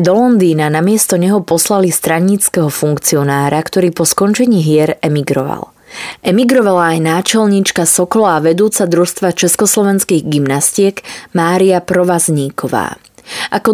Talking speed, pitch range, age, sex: 105 wpm, 155-195 Hz, 20-39, female